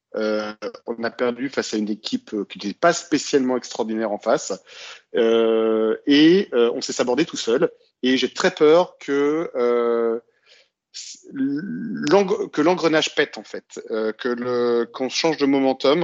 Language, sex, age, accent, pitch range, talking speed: French, male, 40-59, French, 110-145 Hz, 155 wpm